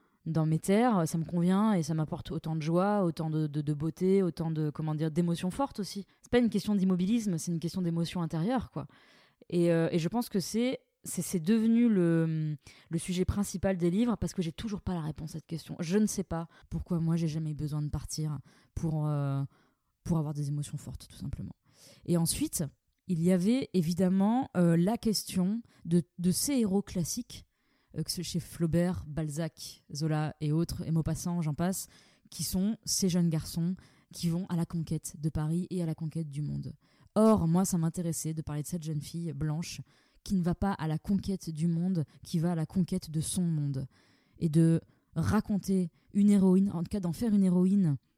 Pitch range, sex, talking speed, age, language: 155-190 Hz, female, 205 wpm, 20-39, French